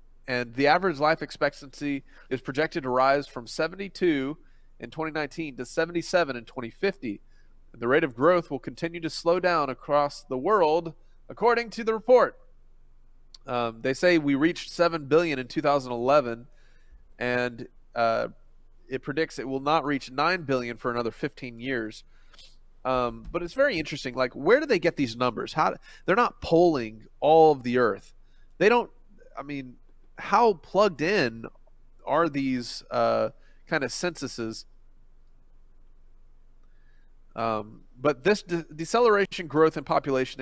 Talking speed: 145 wpm